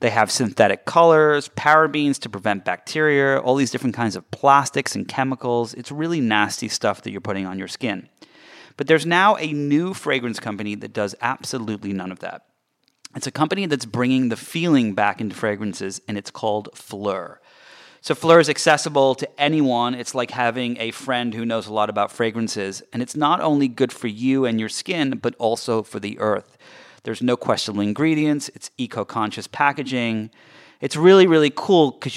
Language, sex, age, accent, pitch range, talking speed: English, male, 30-49, American, 110-140 Hz, 185 wpm